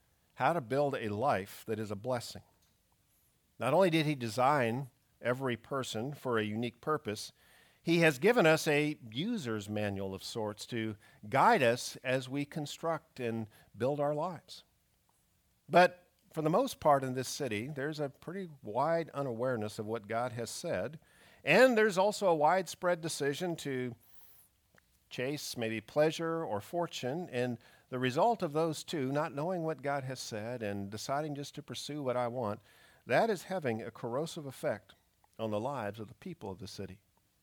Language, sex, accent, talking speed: English, male, American, 165 wpm